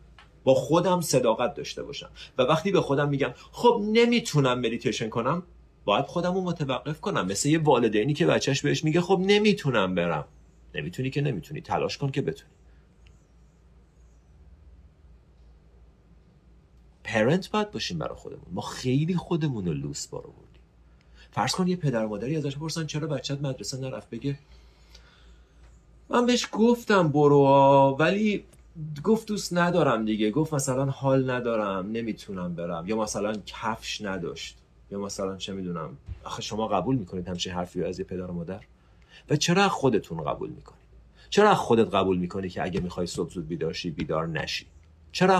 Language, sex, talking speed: Persian, male, 145 wpm